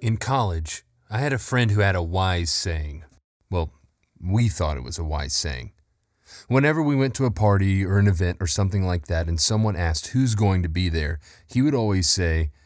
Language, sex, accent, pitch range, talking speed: English, male, American, 85-110 Hz, 210 wpm